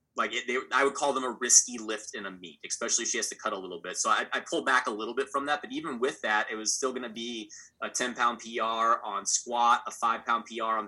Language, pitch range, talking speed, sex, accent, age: English, 105-135 Hz, 270 wpm, male, American, 20-39